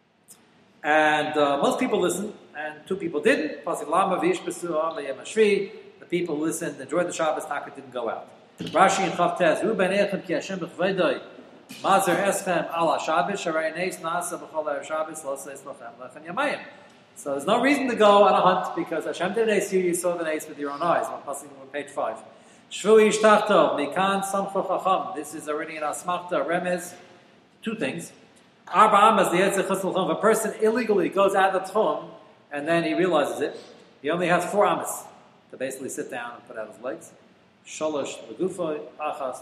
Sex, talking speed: male, 125 wpm